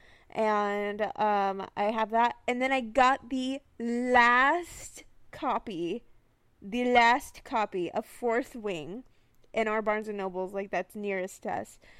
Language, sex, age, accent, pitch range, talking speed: English, female, 20-39, American, 195-250 Hz, 140 wpm